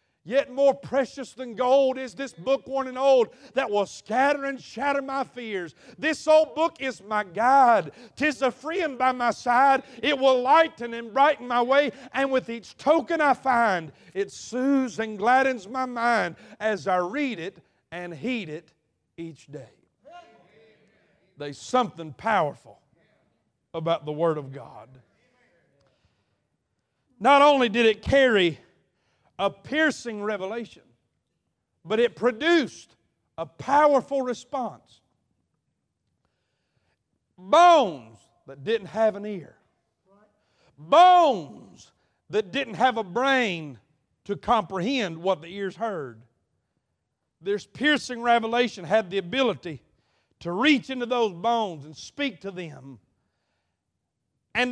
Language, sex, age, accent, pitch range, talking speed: English, male, 40-59, American, 165-265 Hz, 125 wpm